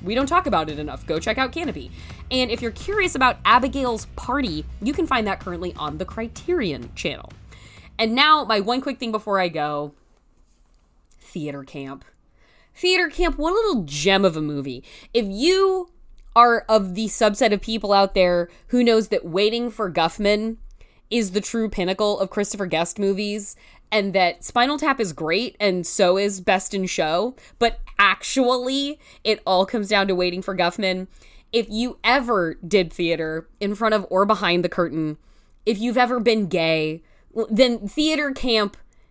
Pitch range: 180-245 Hz